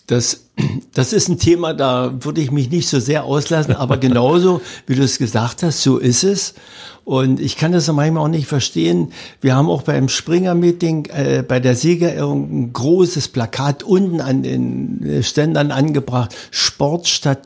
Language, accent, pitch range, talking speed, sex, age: German, German, 130-165 Hz, 170 wpm, male, 60-79